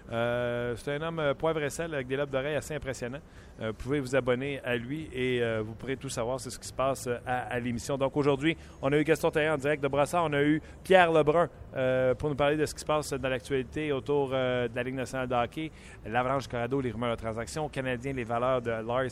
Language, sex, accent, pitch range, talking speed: French, male, Canadian, 120-145 Hz, 255 wpm